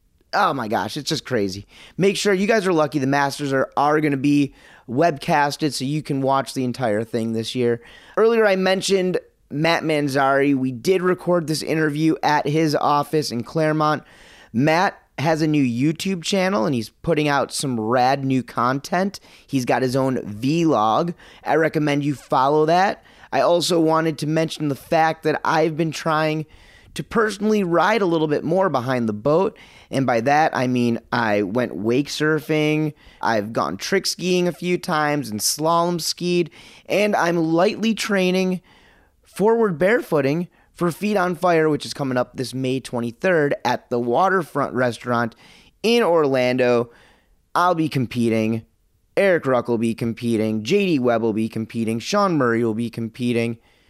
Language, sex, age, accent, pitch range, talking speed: English, male, 30-49, American, 120-170 Hz, 165 wpm